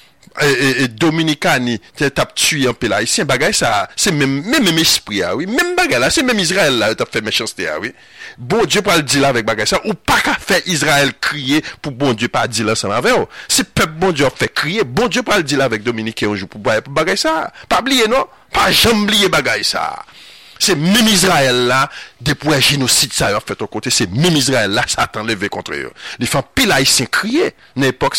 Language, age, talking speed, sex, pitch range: French, 50-69, 220 wpm, male, 130-170 Hz